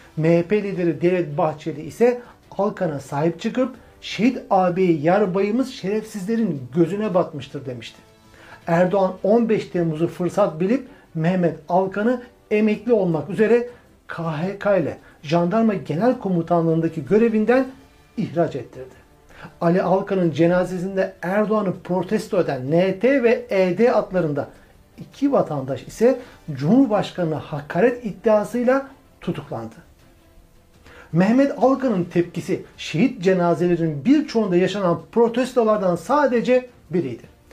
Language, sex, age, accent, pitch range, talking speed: Turkish, male, 60-79, native, 170-220 Hz, 100 wpm